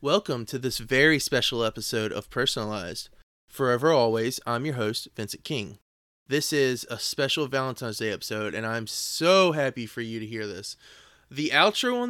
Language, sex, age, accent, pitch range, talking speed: English, male, 20-39, American, 110-135 Hz, 170 wpm